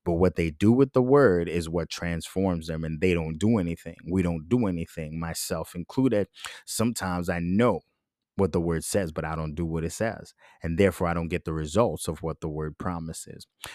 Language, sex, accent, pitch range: English, male, American, 85-110 Hz